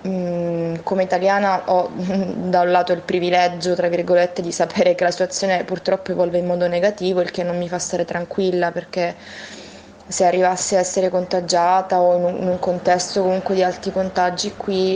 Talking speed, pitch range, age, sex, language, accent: 165 wpm, 175-190 Hz, 20-39, female, Italian, native